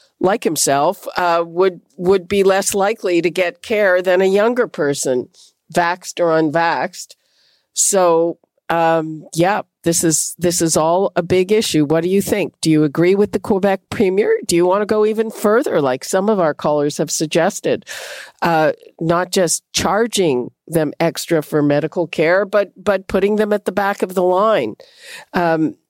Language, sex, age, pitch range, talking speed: English, female, 50-69, 165-205 Hz, 170 wpm